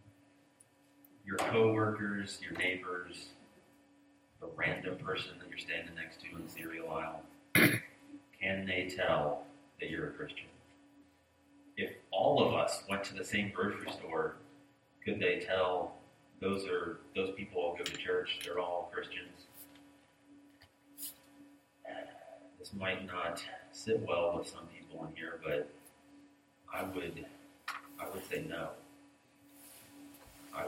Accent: American